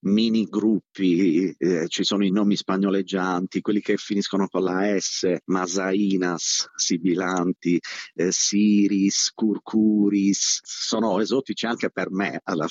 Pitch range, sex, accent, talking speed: 90-105 Hz, male, native, 120 wpm